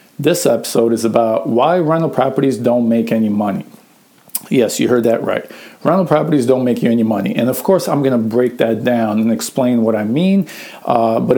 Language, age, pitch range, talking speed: English, 50-69, 120-145 Hz, 200 wpm